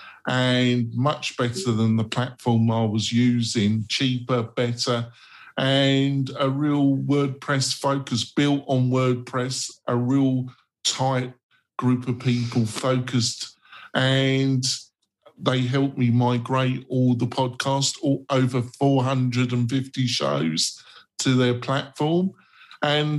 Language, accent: English, British